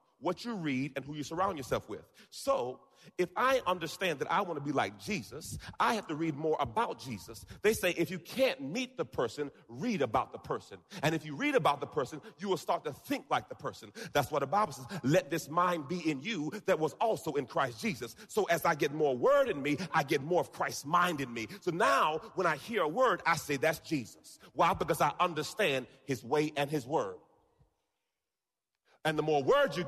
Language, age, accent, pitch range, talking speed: English, 40-59, American, 145-185 Hz, 225 wpm